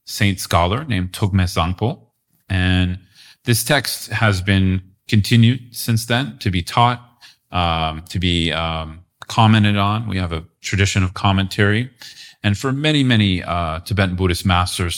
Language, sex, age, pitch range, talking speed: English, male, 30-49, 90-110 Hz, 145 wpm